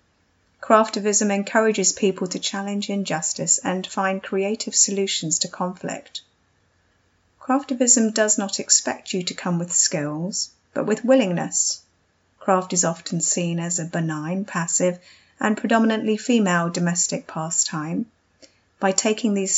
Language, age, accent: English, 30-49, British